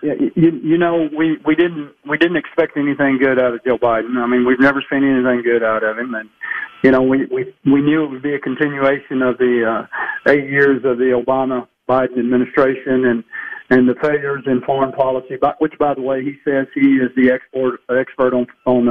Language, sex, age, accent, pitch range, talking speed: English, male, 40-59, American, 130-155 Hz, 215 wpm